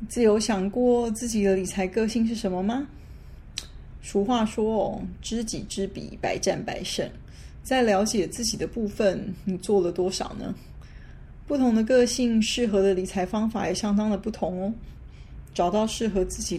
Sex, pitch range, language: female, 190-225 Hz, Chinese